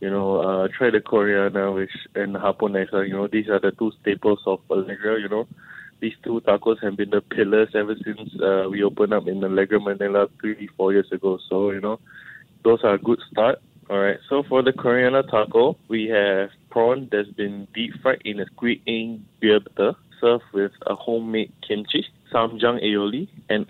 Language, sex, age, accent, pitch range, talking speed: English, male, 20-39, Malaysian, 100-115 Hz, 185 wpm